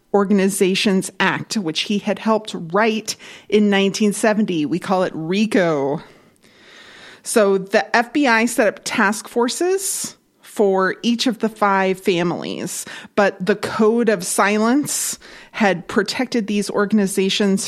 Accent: American